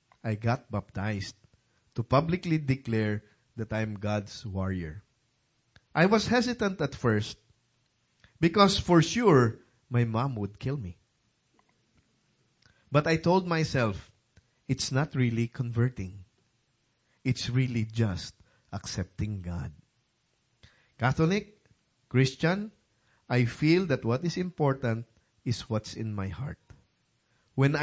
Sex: male